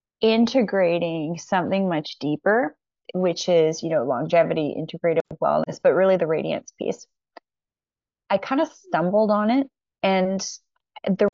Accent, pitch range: American, 165-195 Hz